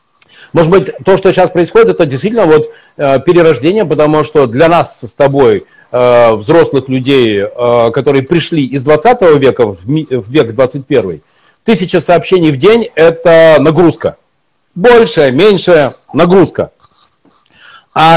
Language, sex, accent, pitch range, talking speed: Russian, male, native, 145-180 Hz, 135 wpm